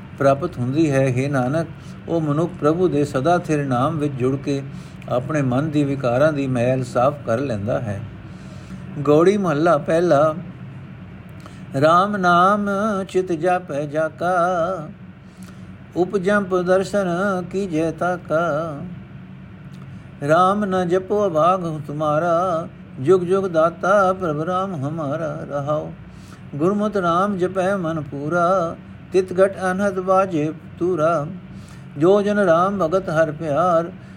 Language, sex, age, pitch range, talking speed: Punjabi, male, 50-69, 155-190 Hz, 115 wpm